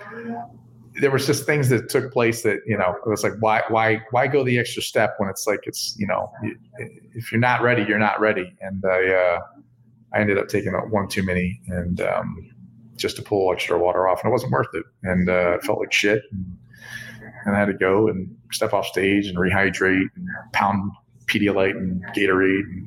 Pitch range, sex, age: 95-115 Hz, male, 40-59